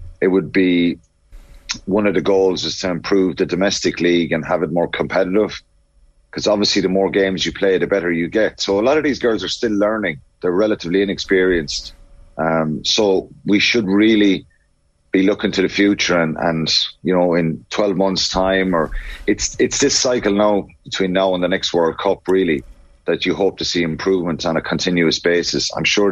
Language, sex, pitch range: English, male, 80-95 Hz